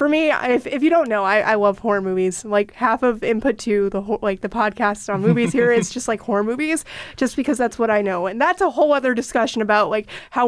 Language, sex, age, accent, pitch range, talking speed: English, female, 20-39, American, 215-270 Hz, 260 wpm